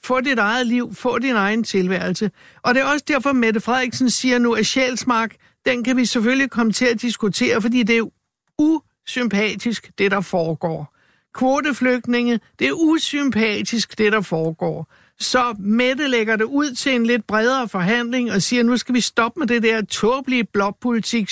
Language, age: Danish, 60-79